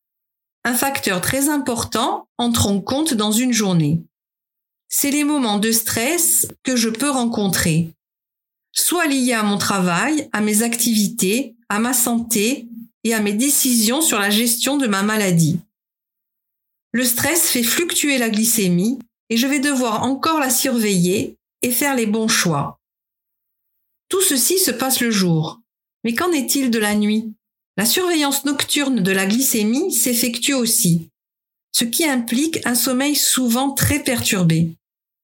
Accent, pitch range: French, 205-275 Hz